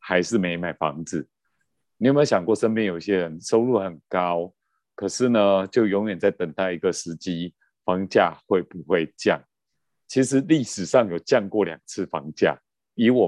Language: Chinese